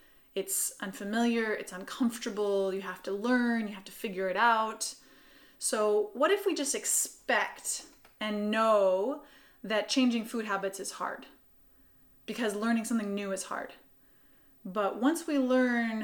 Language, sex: English, female